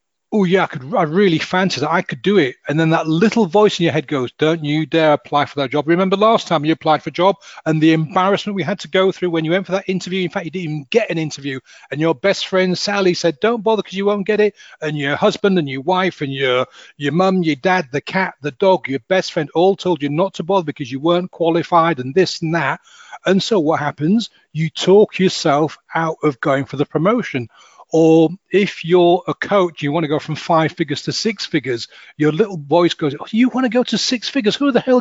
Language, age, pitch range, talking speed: English, 40-59, 155-195 Hz, 250 wpm